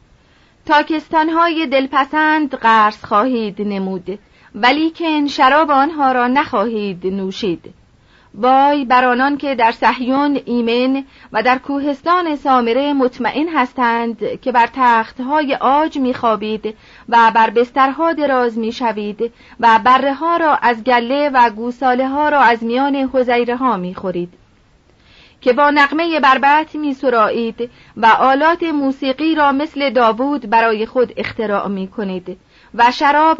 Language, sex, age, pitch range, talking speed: Persian, female, 40-59, 230-280 Hz, 120 wpm